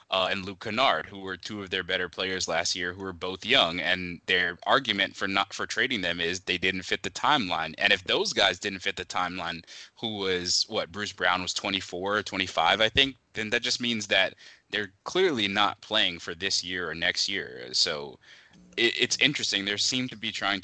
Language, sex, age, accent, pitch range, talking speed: English, male, 20-39, American, 85-100 Hz, 215 wpm